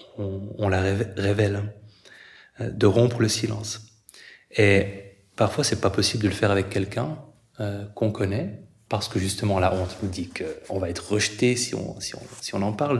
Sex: male